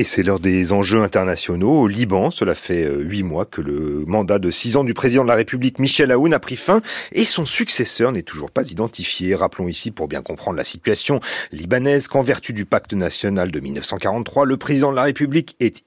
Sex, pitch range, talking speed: male, 95-135 Hz, 210 wpm